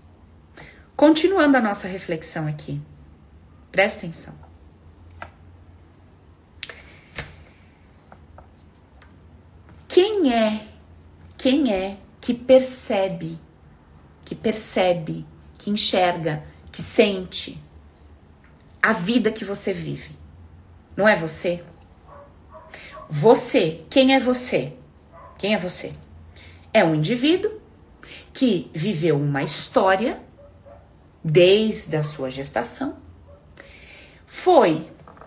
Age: 40-59